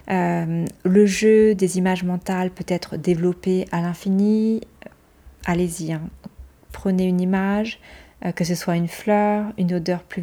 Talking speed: 145 wpm